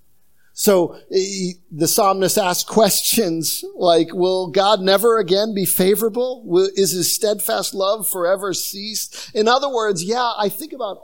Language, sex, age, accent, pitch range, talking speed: English, male, 50-69, American, 145-195 Hz, 135 wpm